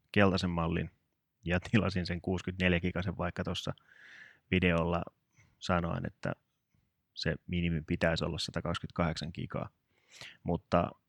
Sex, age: male, 30-49